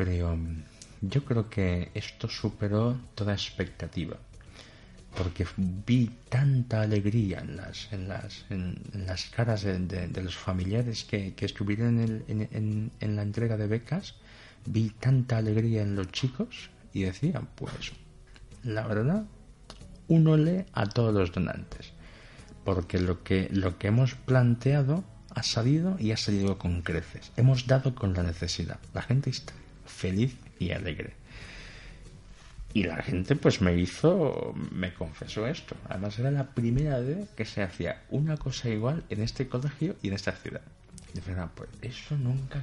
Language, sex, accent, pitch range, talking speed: Spanish, male, Spanish, 95-125 Hz, 145 wpm